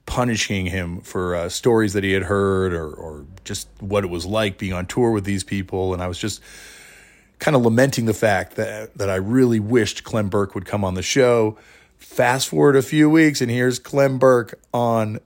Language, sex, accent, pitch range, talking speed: English, male, American, 95-115 Hz, 210 wpm